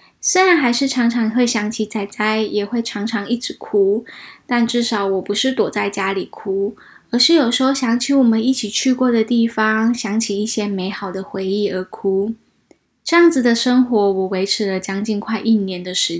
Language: Chinese